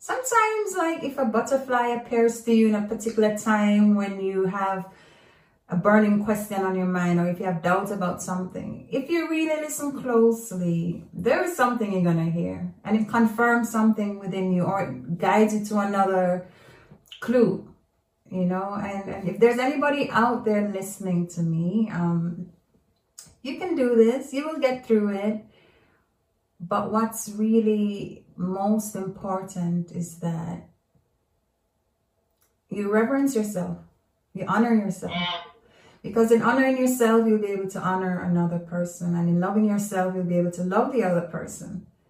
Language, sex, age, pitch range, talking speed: English, female, 30-49, 180-230 Hz, 155 wpm